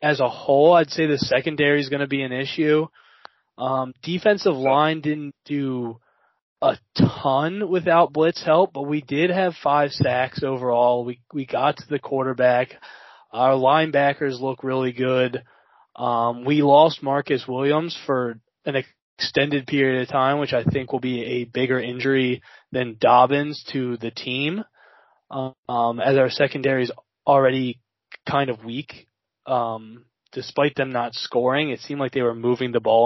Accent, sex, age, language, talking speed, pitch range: American, male, 20-39, English, 160 wpm, 125-150 Hz